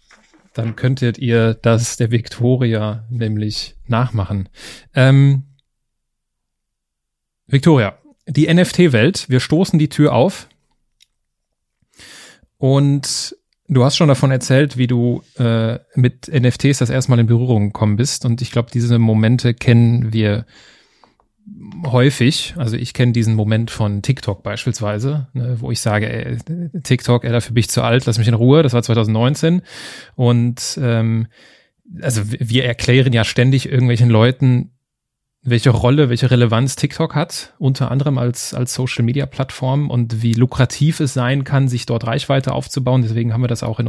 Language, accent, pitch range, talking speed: German, German, 115-140 Hz, 150 wpm